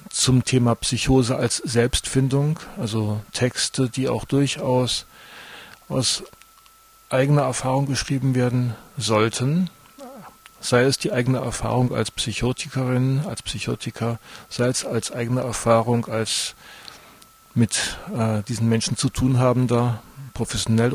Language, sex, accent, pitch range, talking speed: German, male, German, 115-135 Hz, 115 wpm